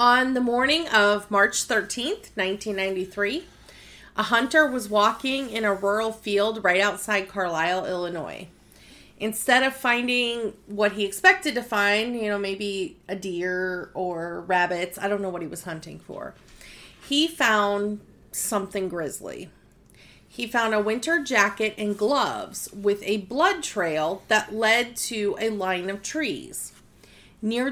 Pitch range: 195-240 Hz